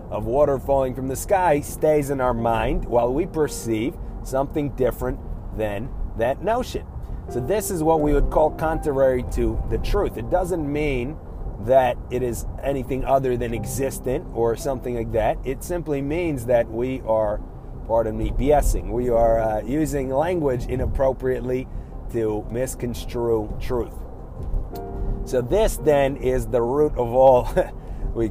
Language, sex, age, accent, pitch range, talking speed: English, male, 30-49, American, 115-140 Hz, 150 wpm